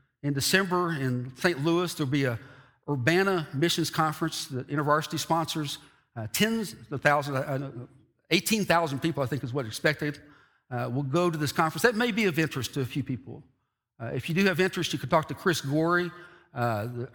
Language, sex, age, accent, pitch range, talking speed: English, male, 60-79, American, 130-175 Hz, 190 wpm